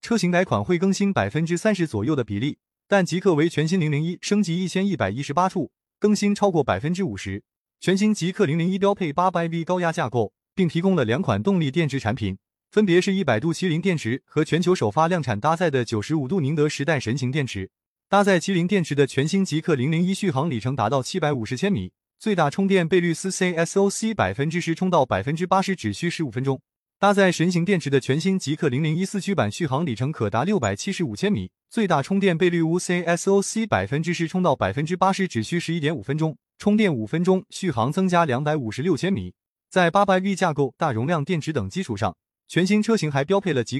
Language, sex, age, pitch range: Chinese, male, 20-39, 140-190 Hz